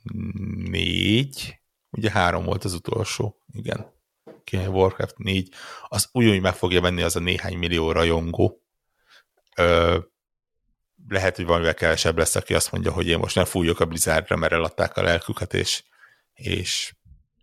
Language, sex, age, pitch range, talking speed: Hungarian, male, 60-79, 90-110 Hz, 150 wpm